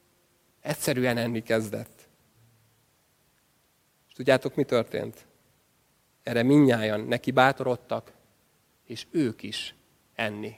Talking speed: 85 wpm